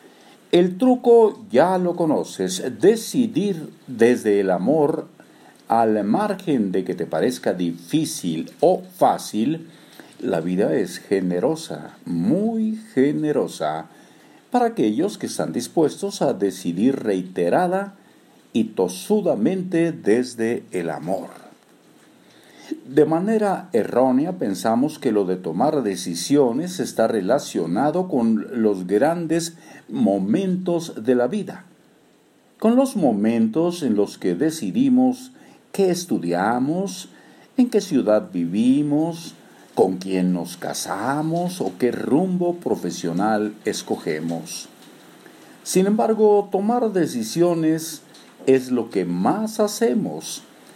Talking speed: 100 wpm